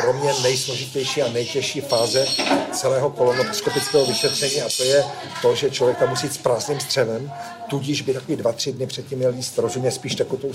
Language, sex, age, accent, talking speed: Czech, male, 50-69, native, 175 wpm